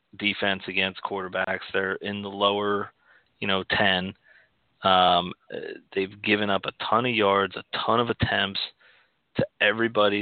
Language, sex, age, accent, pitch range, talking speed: English, male, 30-49, American, 95-115 Hz, 140 wpm